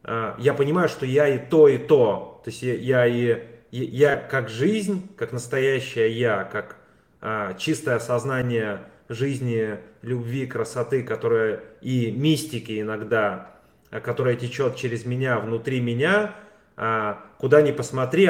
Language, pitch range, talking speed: Russian, 115-140 Hz, 130 wpm